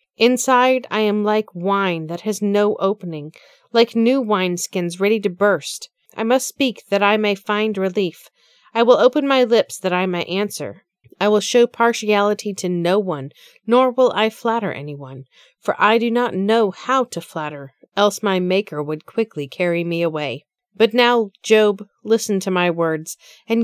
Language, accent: English, American